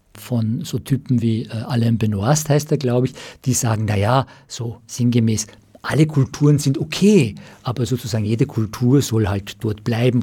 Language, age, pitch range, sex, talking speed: German, 50-69, 115-150 Hz, male, 165 wpm